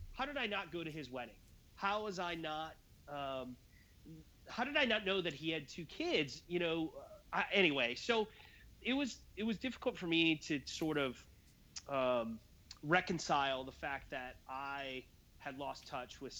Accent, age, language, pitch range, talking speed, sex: American, 30-49, English, 115-160 Hz, 175 wpm, male